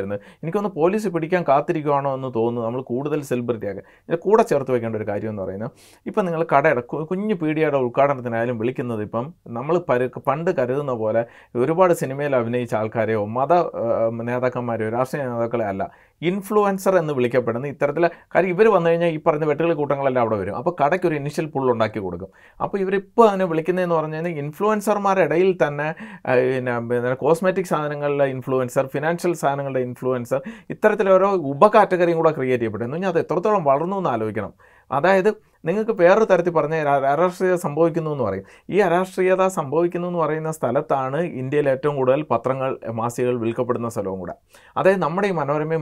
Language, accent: Malayalam, native